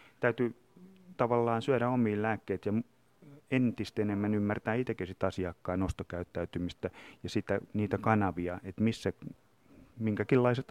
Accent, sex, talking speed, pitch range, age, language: Finnish, male, 105 wpm, 95-115 Hz, 30-49, English